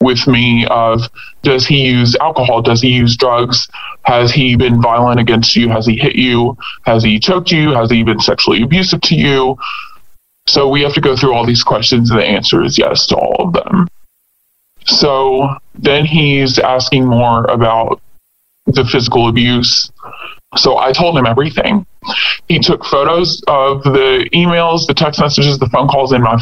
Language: English